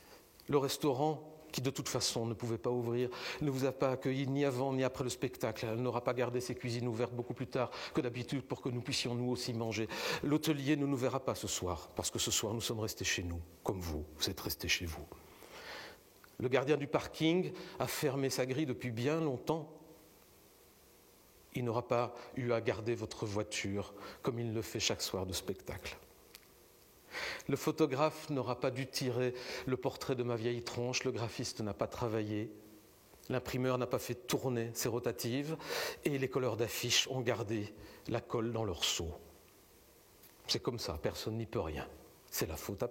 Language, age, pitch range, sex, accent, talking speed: French, 50-69, 115-135 Hz, male, French, 190 wpm